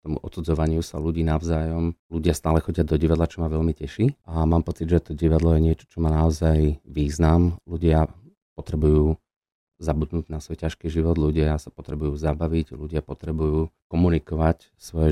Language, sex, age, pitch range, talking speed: Slovak, male, 40-59, 80-90 Hz, 165 wpm